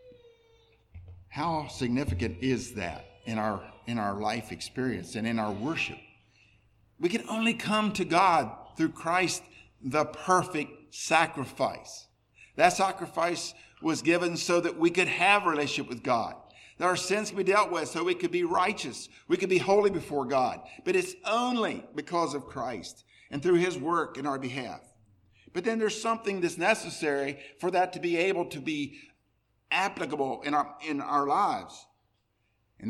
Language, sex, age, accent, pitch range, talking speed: English, male, 50-69, American, 110-175 Hz, 160 wpm